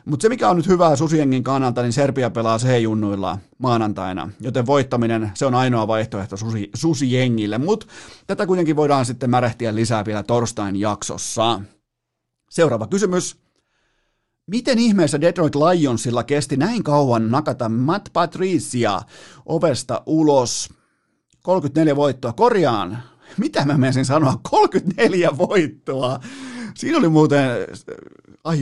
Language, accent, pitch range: Finnish, native, 120-165 Hz